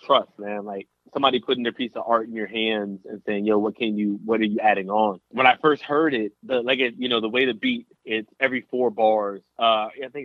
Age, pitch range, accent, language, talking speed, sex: 20-39, 105-130 Hz, American, English, 260 wpm, male